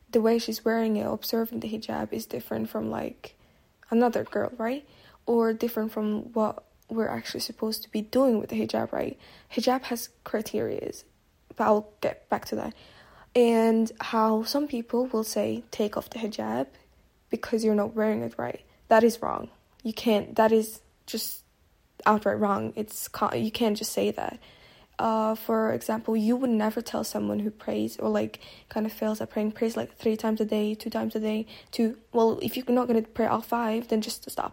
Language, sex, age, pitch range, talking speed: English, female, 10-29, 215-230 Hz, 190 wpm